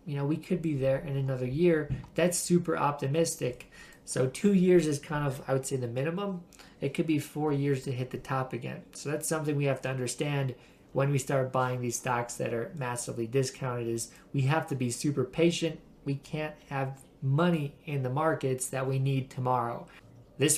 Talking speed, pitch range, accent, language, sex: 200 wpm, 130-155 Hz, American, English, male